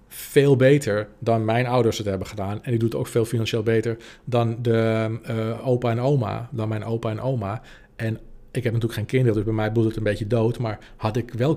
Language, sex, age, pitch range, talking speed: Dutch, male, 40-59, 115-140 Hz, 235 wpm